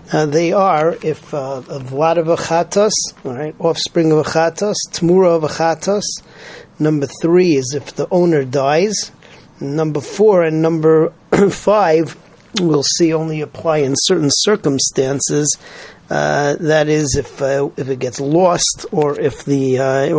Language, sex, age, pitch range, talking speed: English, male, 40-59, 140-170 Hz, 145 wpm